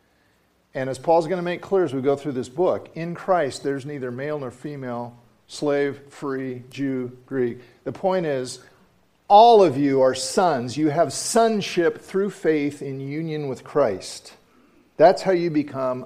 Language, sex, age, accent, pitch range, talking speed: English, male, 50-69, American, 130-190 Hz, 170 wpm